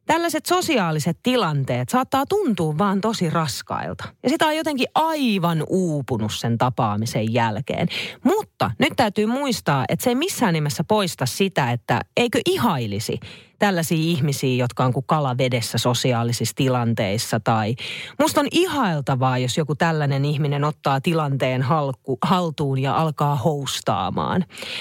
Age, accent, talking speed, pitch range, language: 30-49, native, 130 wpm, 135-205 Hz, Finnish